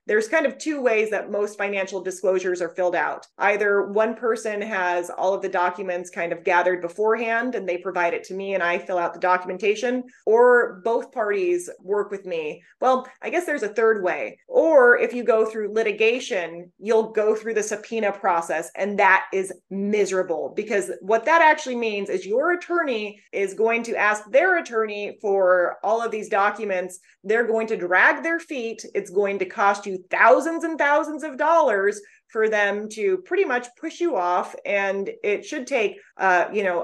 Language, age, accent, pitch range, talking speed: English, 30-49, American, 190-245 Hz, 185 wpm